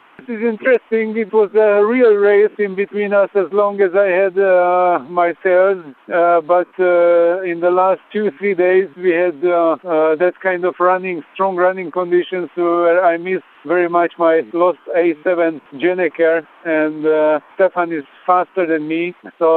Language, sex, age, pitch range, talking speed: Hungarian, male, 50-69, 155-180 Hz, 165 wpm